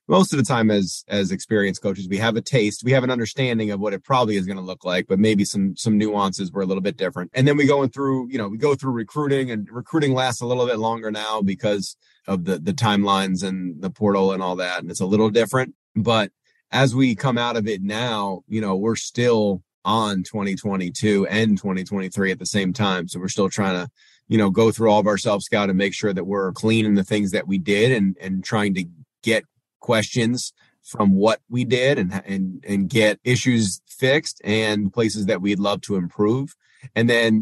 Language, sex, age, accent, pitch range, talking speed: English, male, 30-49, American, 100-120 Hz, 230 wpm